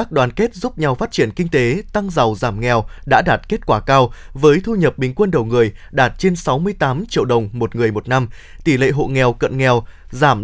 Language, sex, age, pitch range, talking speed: Vietnamese, male, 20-39, 125-170 Hz, 235 wpm